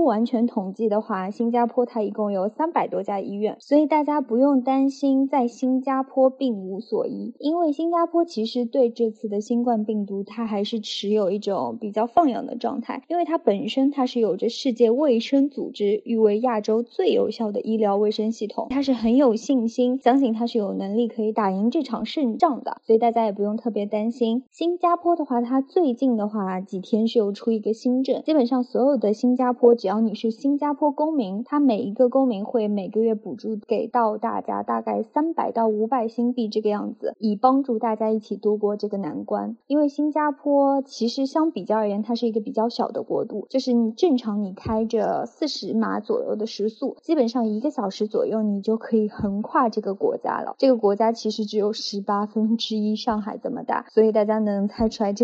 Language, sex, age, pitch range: English, female, 20-39, 215-265 Hz